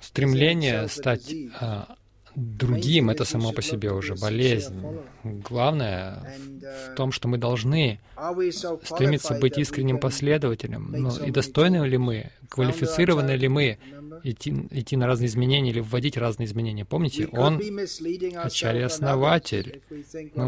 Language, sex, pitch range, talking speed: Russian, male, 120-145 Hz, 120 wpm